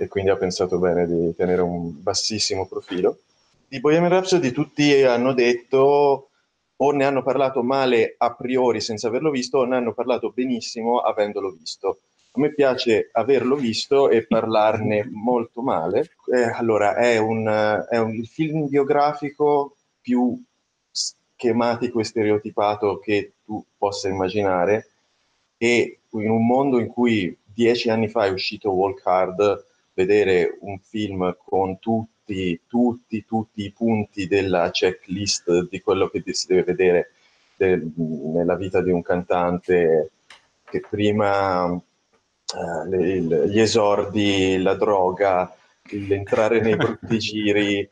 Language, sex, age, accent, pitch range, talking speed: Italian, male, 30-49, native, 100-125 Hz, 130 wpm